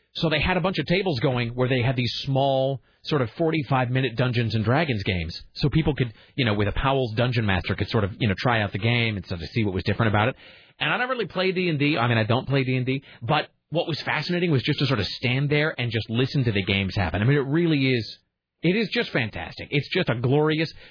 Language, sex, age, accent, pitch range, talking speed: English, male, 30-49, American, 110-150 Hz, 260 wpm